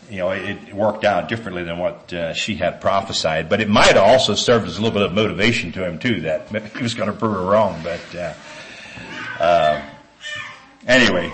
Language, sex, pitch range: English, male, 95-120 Hz